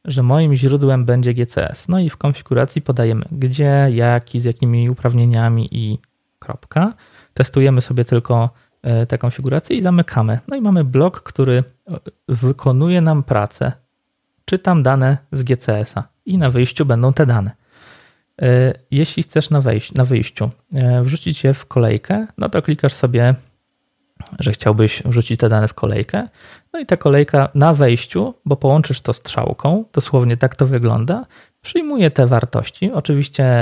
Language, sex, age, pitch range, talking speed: Polish, male, 20-39, 125-155 Hz, 145 wpm